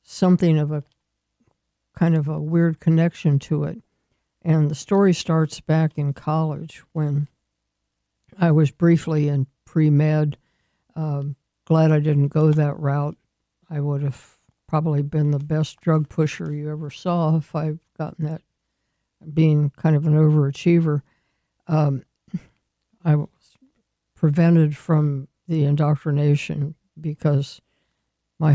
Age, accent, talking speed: 60-79, American, 130 wpm